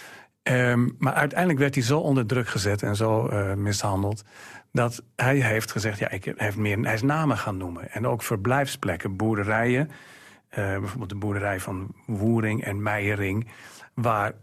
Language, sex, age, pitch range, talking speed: Dutch, male, 40-59, 105-130 Hz, 150 wpm